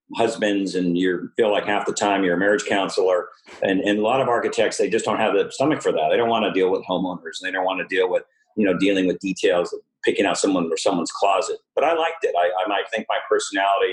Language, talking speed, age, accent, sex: English, 255 wpm, 50-69, American, male